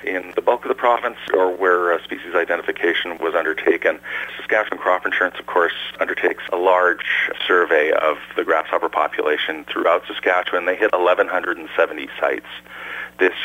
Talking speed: 145 wpm